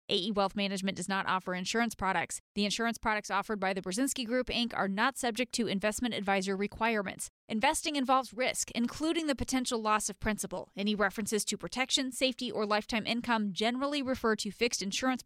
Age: 20-39